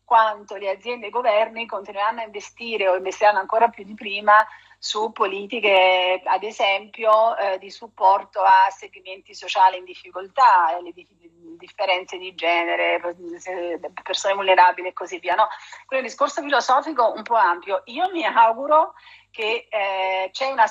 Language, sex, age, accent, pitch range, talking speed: Italian, female, 40-59, native, 190-230 Hz, 155 wpm